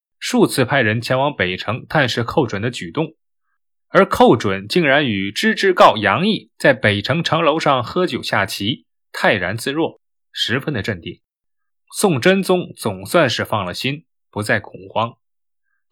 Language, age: Chinese, 20-39